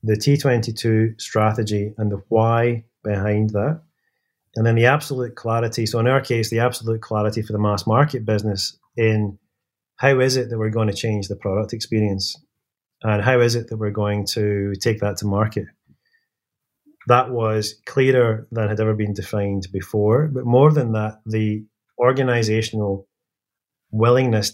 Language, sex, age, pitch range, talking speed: English, male, 30-49, 105-120 Hz, 160 wpm